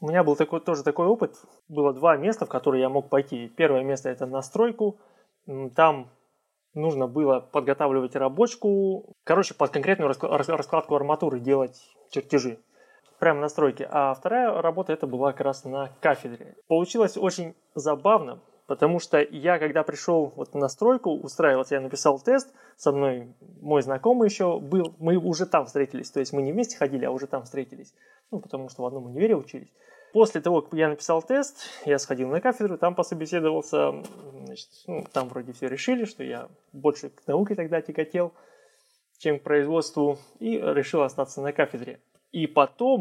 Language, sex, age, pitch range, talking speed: Russian, male, 20-39, 135-180 Hz, 170 wpm